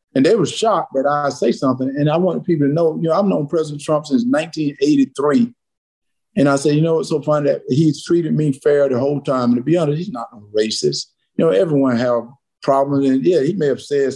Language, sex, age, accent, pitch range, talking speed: English, male, 50-69, American, 135-160 Hz, 240 wpm